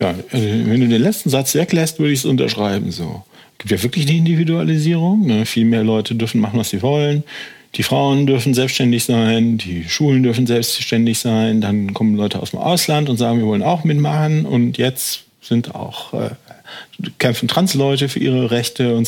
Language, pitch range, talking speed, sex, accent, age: German, 115-150 Hz, 190 wpm, male, German, 50-69